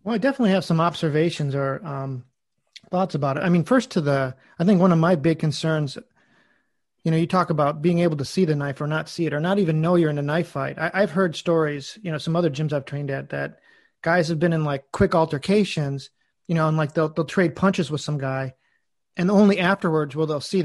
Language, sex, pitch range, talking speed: English, male, 150-185 Hz, 240 wpm